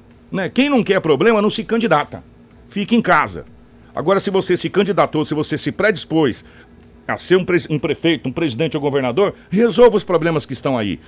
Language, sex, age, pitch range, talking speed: Portuguese, male, 60-79, 145-190 Hz, 200 wpm